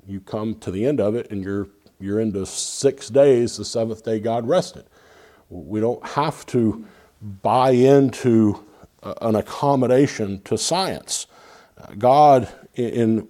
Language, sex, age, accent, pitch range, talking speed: English, male, 50-69, American, 90-115 Hz, 135 wpm